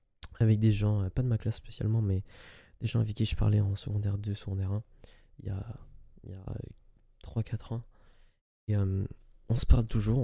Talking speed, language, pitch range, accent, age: 190 wpm, French, 100-115 Hz, French, 20-39